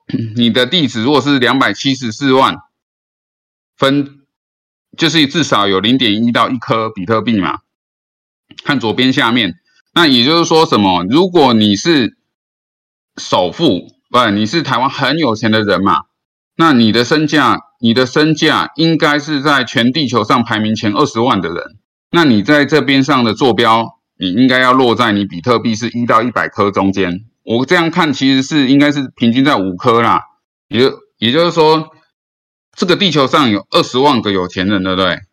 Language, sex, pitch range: Chinese, male, 105-145 Hz